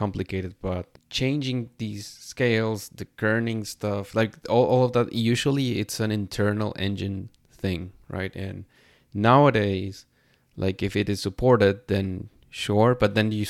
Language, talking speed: English, 140 wpm